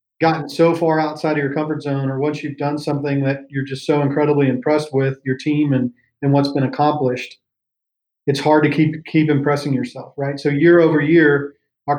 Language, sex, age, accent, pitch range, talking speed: English, male, 40-59, American, 135-155 Hz, 200 wpm